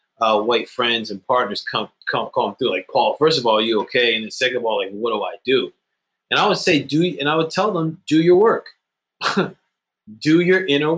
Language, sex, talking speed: English, male, 235 wpm